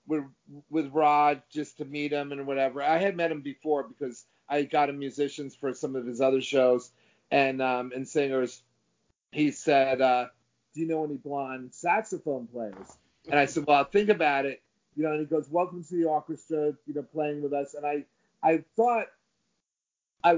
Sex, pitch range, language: male, 135-155 Hz, English